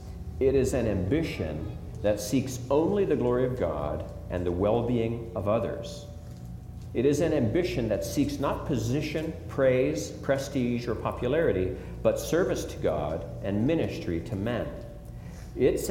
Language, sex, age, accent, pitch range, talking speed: English, male, 50-69, American, 100-135 Hz, 140 wpm